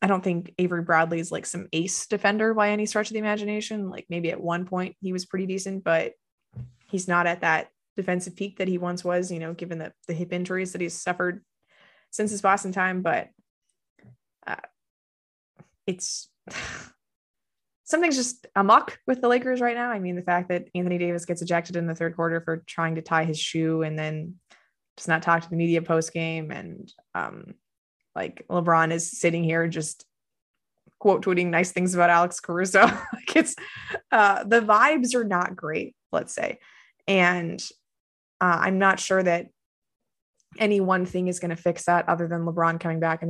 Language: English